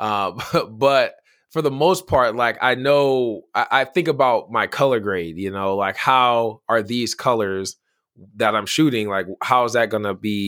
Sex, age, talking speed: male, 20-39, 190 wpm